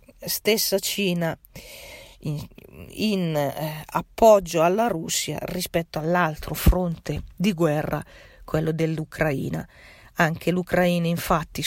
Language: Italian